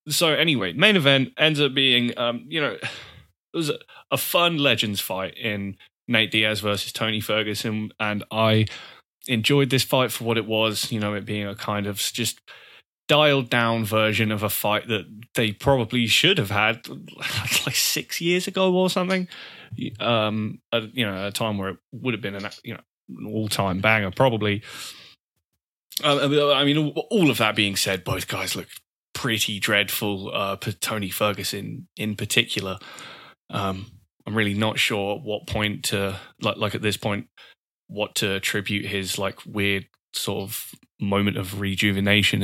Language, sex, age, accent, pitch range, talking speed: English, male, 20-39, British, 100-125 Hz, 170 wpm